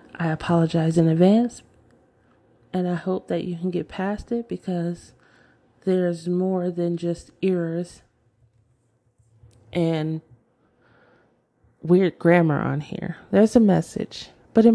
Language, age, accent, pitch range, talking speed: English, 30-49, American, 150-180 Hz, 120 wpm